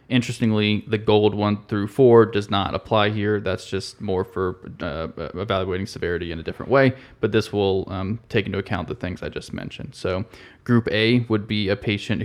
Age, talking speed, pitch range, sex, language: 20-39, 195 wpm, 100-115 Hz, male, English